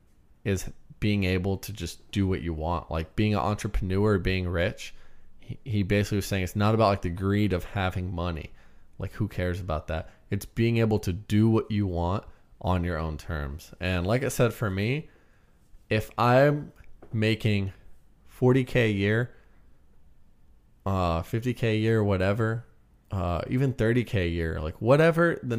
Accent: American